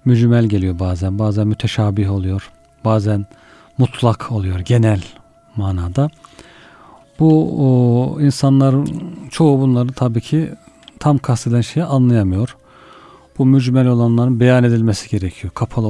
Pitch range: 110-135 Hz